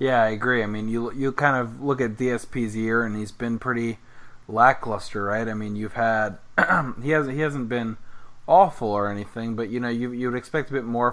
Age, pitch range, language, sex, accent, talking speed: 20-39, 105-120 Hz, English, male, American, 215 wpm